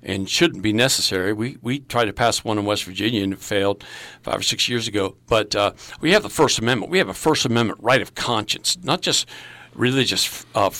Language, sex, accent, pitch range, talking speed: English, male, American, 110-145 Hz, 220 wpm